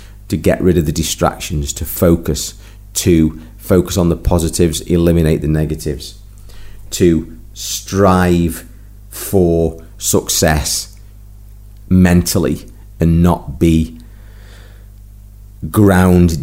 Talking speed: 90 wpm